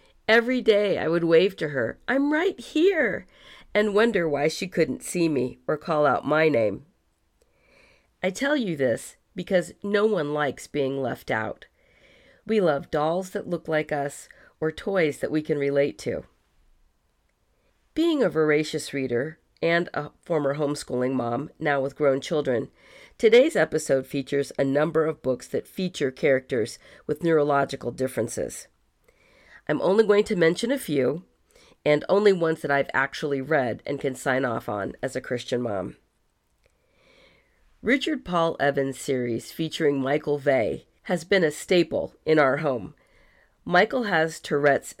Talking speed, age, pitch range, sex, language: 150 wpm, 50-69, 140-190 Hz, female, English